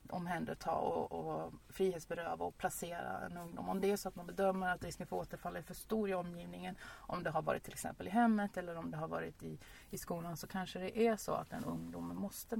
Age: 30-49